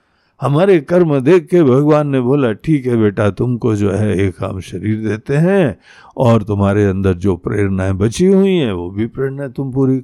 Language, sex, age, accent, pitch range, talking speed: Hindi, male, 60-79, native, 100-135 Hz, 185 wpm